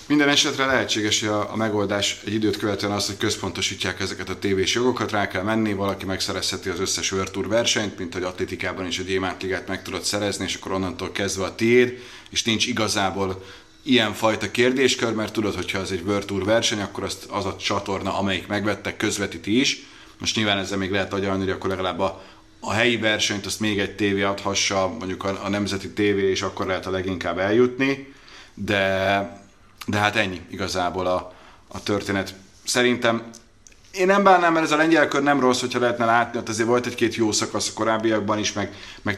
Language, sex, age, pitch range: Hungarian, male, 30-49, 95-115 Hz